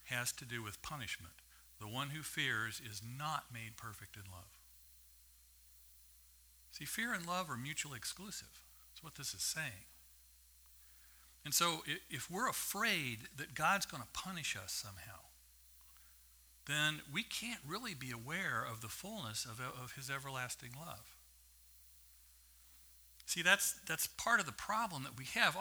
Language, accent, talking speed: English, American, 145 wpm